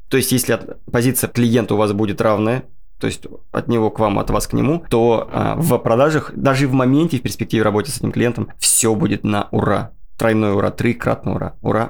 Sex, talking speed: male, 205 wpm